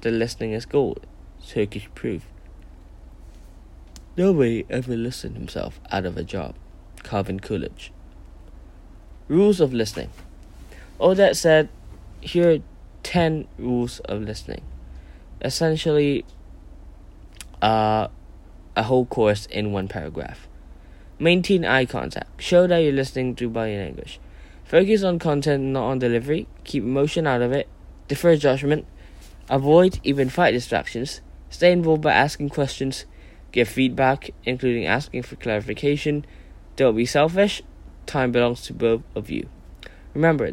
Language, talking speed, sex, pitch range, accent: English, 125 wpm, male, 90-140 Hz, British